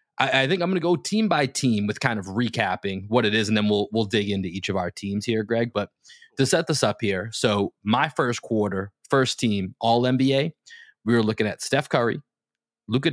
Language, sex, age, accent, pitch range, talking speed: English, male, 30-49, American, 105-140 Hz, 225 wpm